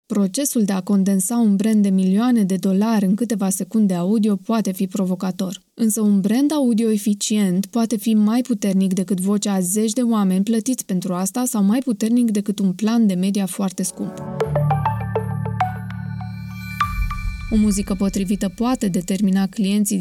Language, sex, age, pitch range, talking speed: Romanian, female, 20-39, 195-225 Hz, 155 wpm